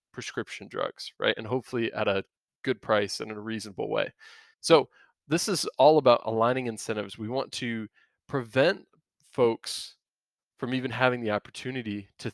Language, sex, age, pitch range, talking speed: English, male, 20-39, 110-135 Hz, 155 wpm